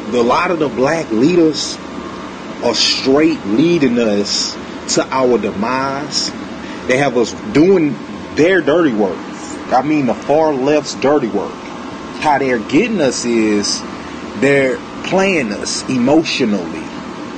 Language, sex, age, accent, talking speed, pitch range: English, male, 30-49, American, 125 wpm, 120-150 Hz